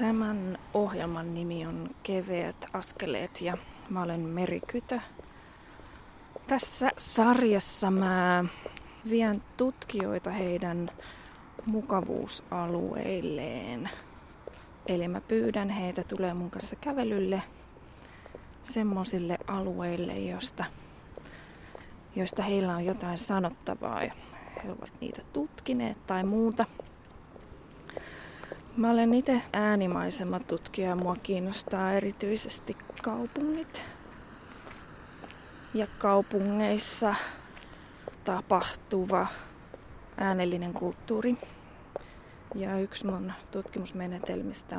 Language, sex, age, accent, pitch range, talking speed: Finnish, female, 20-39, native, 180-215 Hz, 80 wpm